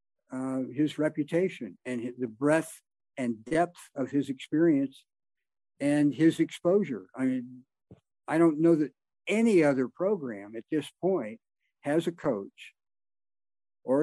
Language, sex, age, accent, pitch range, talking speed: English, male, 50-69, American, 120-145 Hz, 130 wpm